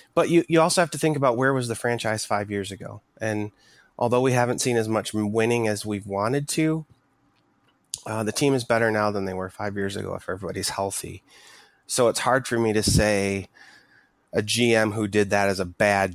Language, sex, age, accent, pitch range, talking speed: English, male, 30-49, American, 100-120 Hz, 210 wpm